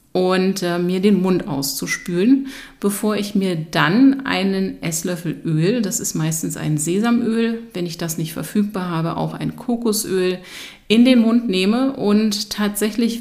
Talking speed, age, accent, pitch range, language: 150 wpm, 30-49, German, 185-215 Hz, German